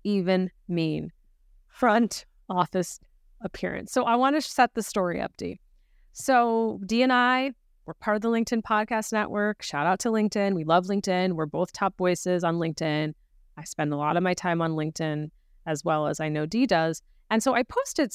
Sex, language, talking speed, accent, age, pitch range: female, English, 190 wpm, American, 30-49, 175-235 Hz